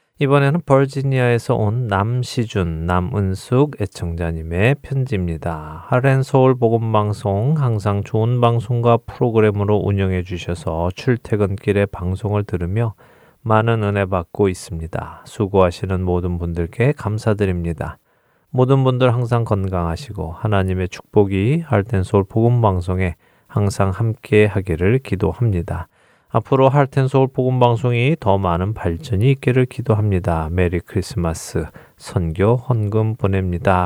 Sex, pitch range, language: male, 90-120 Hz, Korean